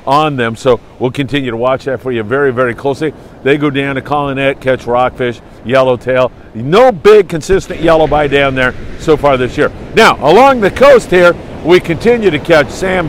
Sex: male